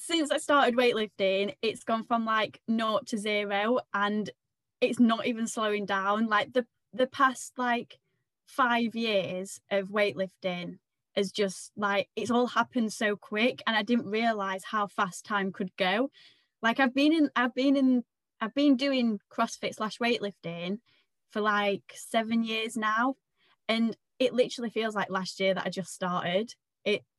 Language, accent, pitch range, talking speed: English, British, 195-240 Hz, 160 wpm